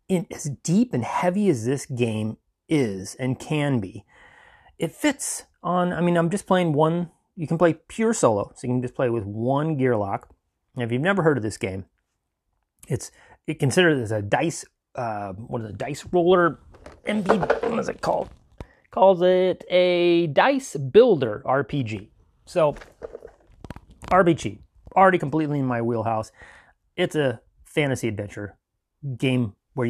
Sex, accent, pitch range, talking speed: male, American, 110-170 Hz, 155 wpm